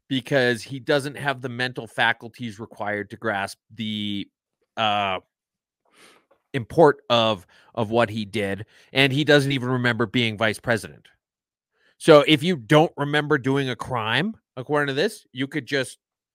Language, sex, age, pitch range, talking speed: English, male, 30-49, 115-150 Hz, 145 wpm